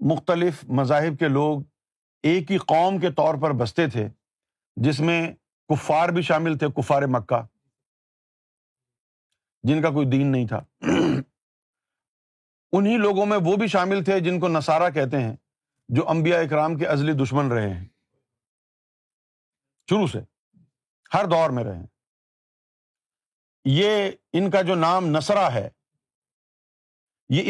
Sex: male